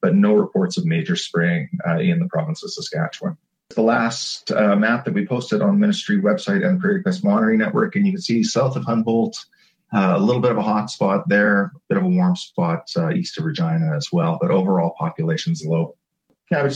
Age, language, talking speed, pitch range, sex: 40-59, English, 220 wpm, 125-190 Hz, male